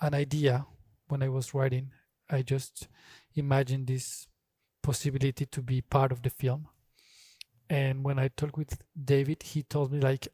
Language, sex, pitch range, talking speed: German, male, 135-150 Hz, 155 wpm